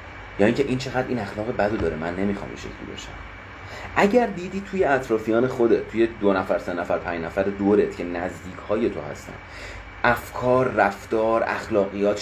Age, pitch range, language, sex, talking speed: 30-49, 95-120 Hz, English, male, 155 wpm